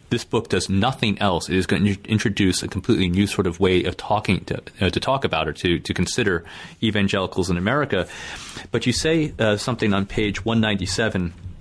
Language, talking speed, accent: English, 190 wpm, American